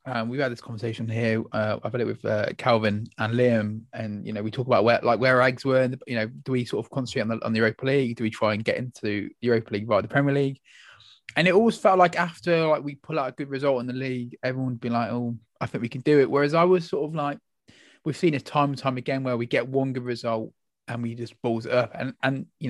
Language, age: English, 20-39